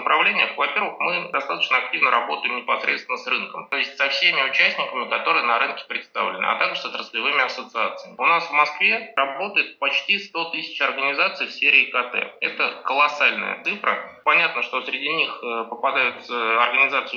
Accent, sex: native, male